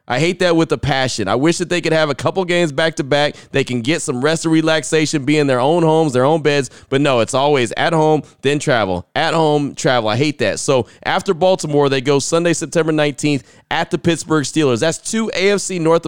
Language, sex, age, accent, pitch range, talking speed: English, male, 20-39, American, 135-165 Hz, 230 wpm